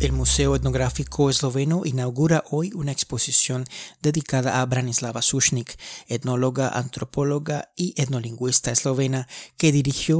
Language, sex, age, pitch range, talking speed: Spanish, male, 30-49, 125-140 Hz, 110 wpm